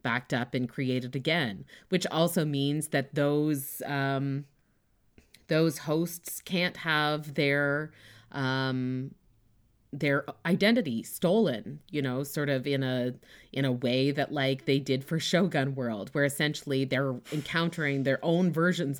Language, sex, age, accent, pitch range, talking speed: English, female, 30-49, American, 125-150 Hz, 135 wpm